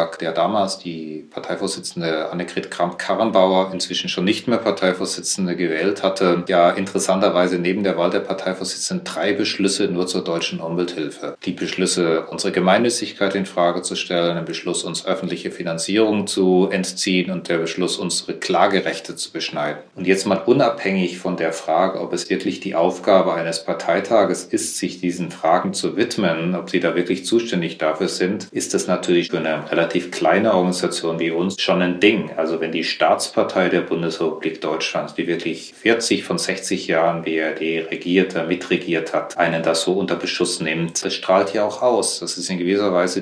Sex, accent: male, German